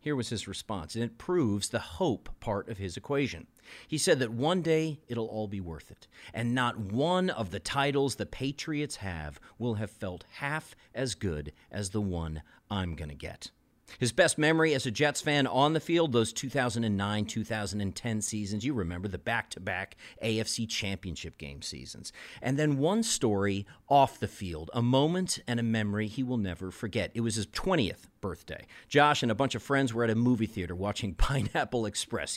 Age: 40-59